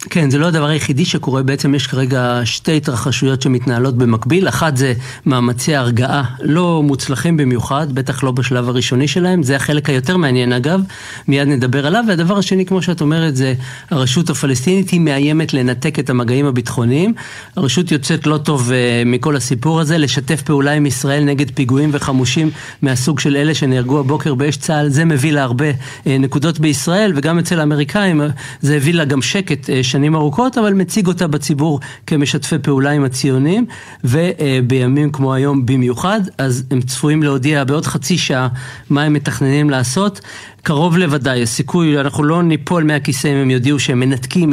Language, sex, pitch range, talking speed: Hebrew, male, 130-160 Hz, 150 wpm